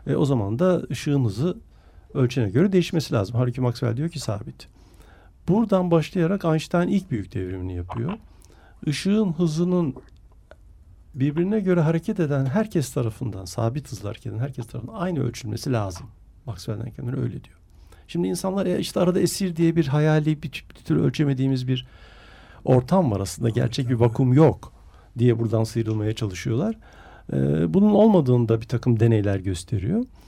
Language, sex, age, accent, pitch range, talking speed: Turkish, male, 60-79, native, 100-160 Hz, 145 wpm